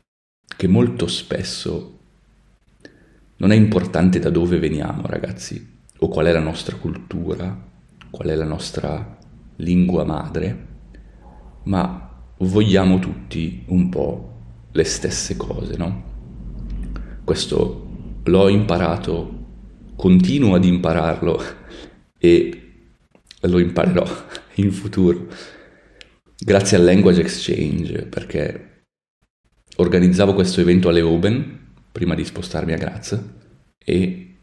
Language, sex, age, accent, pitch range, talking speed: Italian, male, 30-49, native, 80-95 Hz, 100 wpm